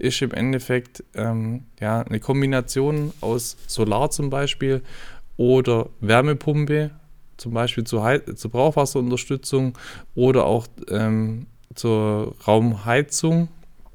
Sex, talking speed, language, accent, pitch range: male, 95 wpm, German, German, 120-140 Hz